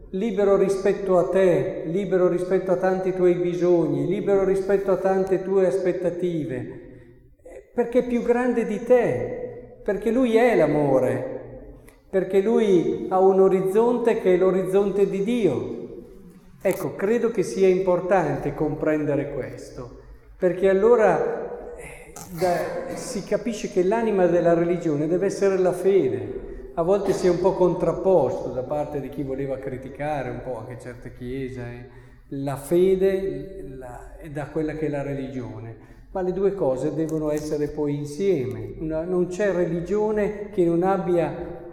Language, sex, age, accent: Italian, male, 50-69, native